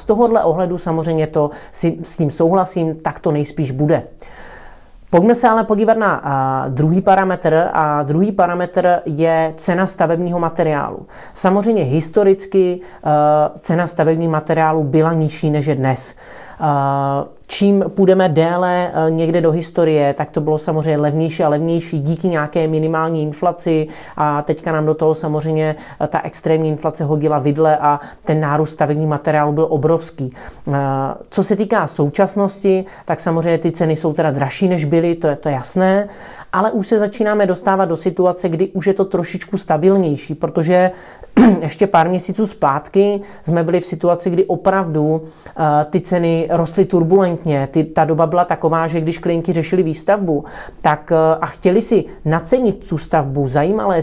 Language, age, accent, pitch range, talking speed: Czech, 30-49, native, 155-180 Hz, 150 wpm